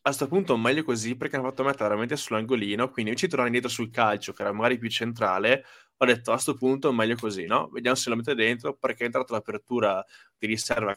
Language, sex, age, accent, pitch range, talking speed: Italian, male, 20-39, native, 105-125 Hz, 240 wpm